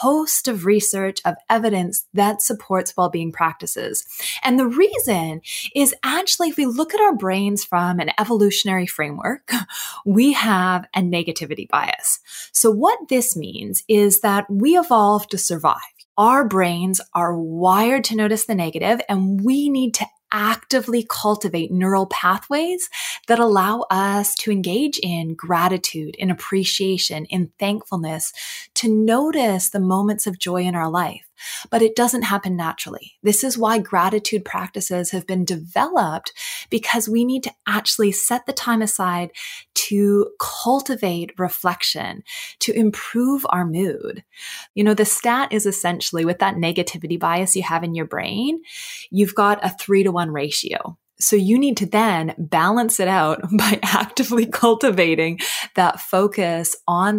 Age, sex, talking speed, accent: 20-39, female, 145 wpm, American